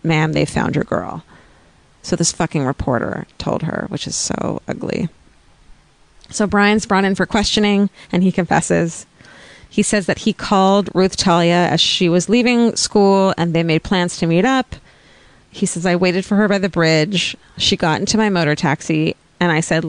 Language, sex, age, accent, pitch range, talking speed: English, female, 30-49, American, 165-190 Hz, 185 wpm